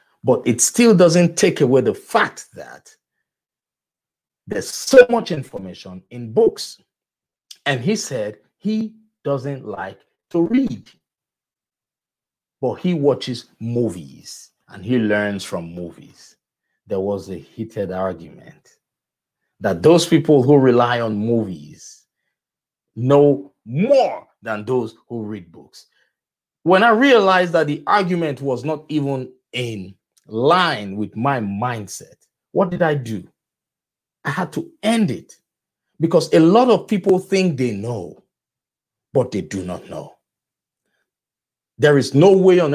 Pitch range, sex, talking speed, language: 110-175 Hz, male, 130 wpm, English